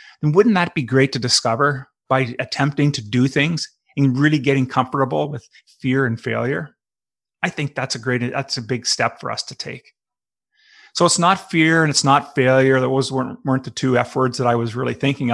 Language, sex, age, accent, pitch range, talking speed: English, male, 30-49, American, 125-145 Hz, 205 wpm